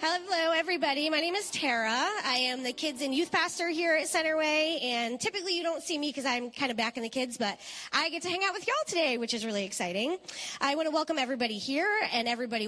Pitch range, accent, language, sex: 225-310 Hz, American, English, female